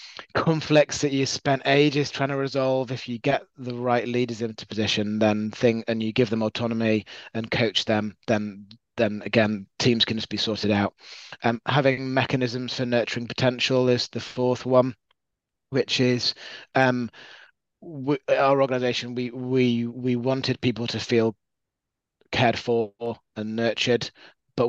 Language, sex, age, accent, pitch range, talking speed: English, male, 20-39, British, 105-125 Hz, 150 wpm